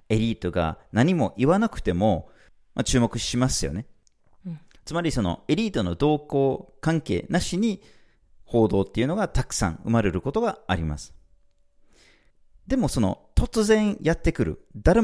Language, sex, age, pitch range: Japanese, male, 40-59, 95-145 Hz